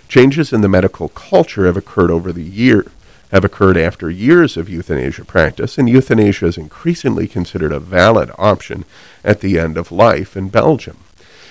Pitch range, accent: 90-115 Hz, American